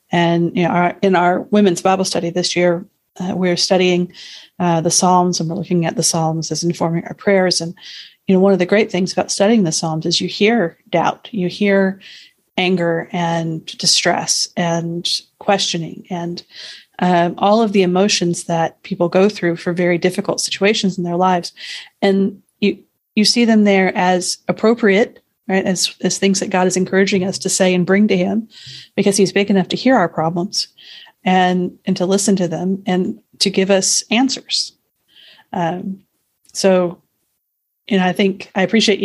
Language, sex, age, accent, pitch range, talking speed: English, female, 40-59, American, 175-195 Hz, 180 wpm